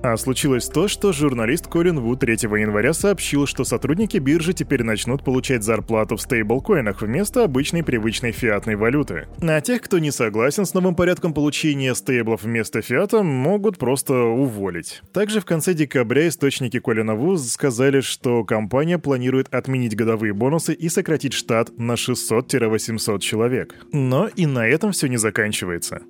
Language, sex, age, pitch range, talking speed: Russian, male, 20-39, 120-170 Hz, 150 wpm